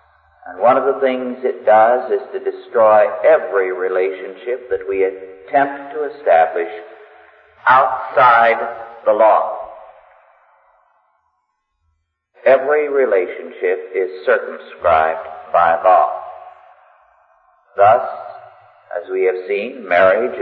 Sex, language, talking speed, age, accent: male, English, 95 wpm, 50-69, American